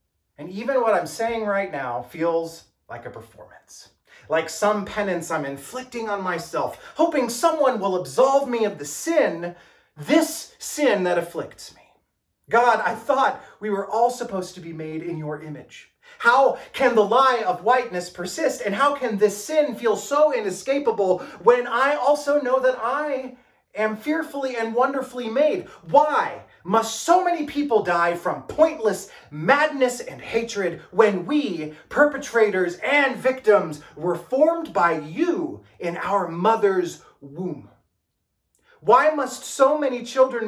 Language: English